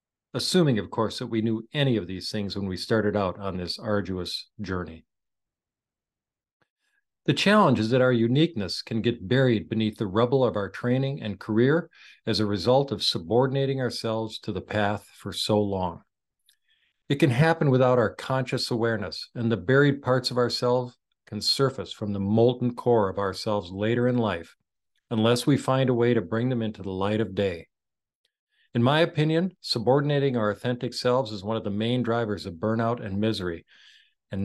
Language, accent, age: English, American, 50-69